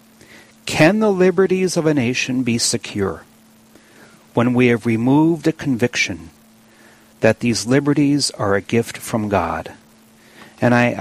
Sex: male